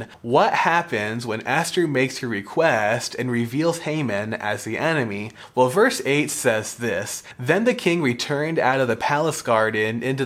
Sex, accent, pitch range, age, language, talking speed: male, American, 115-150 Hz, 20-39, English, 165 wpm